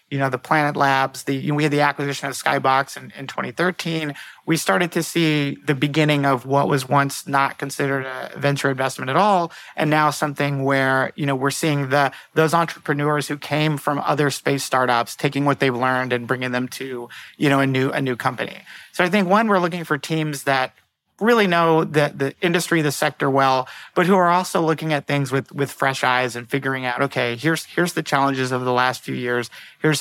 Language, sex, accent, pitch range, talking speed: English, male, American, 135-155 Hz, 215 wpm